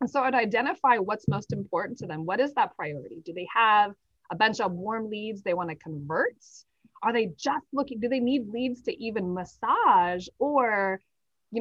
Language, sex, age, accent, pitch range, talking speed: English, female, 20-39, American, 180-240 Hz, 195 wpm